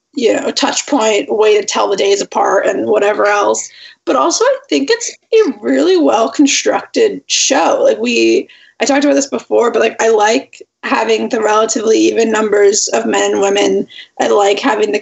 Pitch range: 210-335 Hz